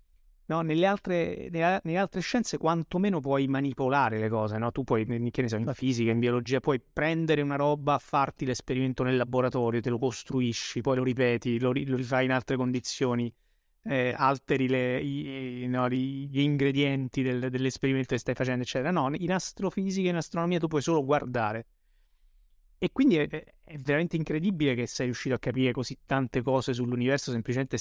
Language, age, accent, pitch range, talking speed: Italian, 30-49, native, 125-150 Hz, 170 wpm